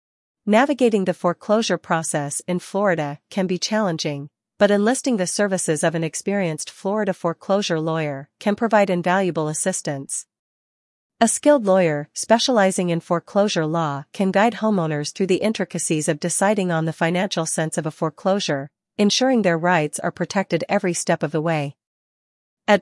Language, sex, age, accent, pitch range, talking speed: English, female, 40-59, American, 160-200 Hz, 145 wpm